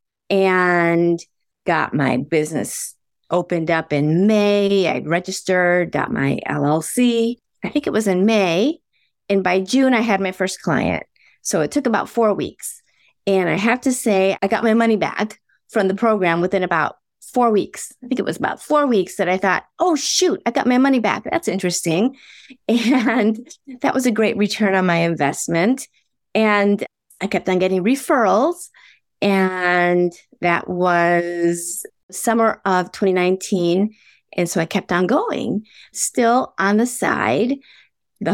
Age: 30-49